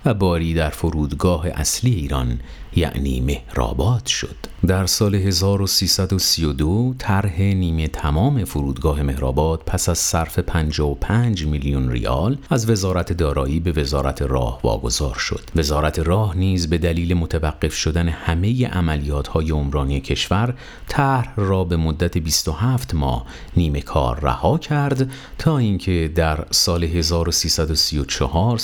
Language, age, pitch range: Persian, 50-69, 75-100 Hz